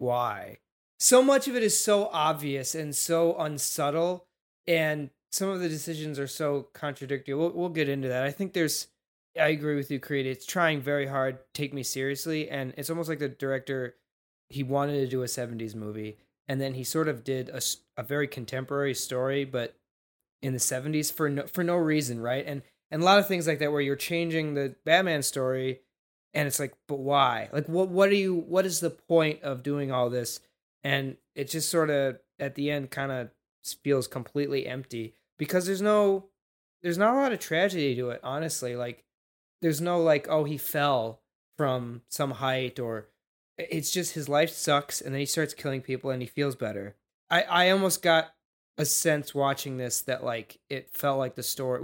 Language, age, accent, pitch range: English, 20-39, American, 130-160 Hz